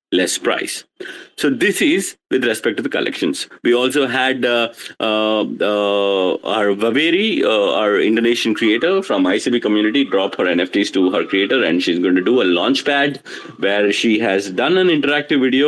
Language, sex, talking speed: English, male, 170 wpm